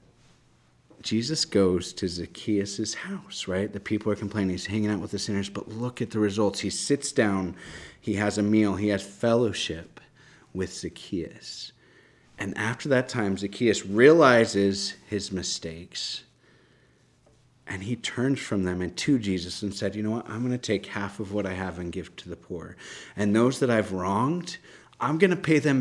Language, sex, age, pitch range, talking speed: English, male, 30-49, 95-120 Hz, 180 wpm